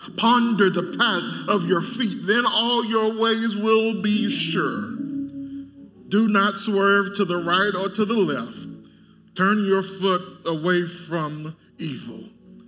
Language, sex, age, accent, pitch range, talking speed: English, male, 50-69, American, 180-225 Hz, 135 wpm